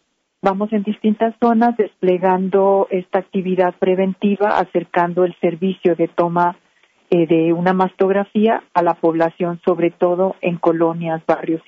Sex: female